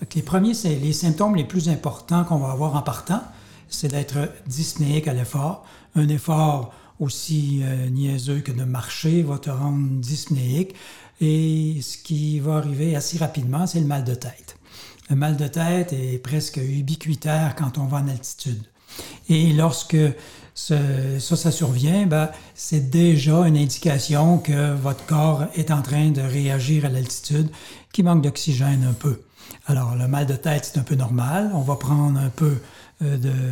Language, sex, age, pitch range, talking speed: French, male, 60-79, 135-155 Hz, 170 wpm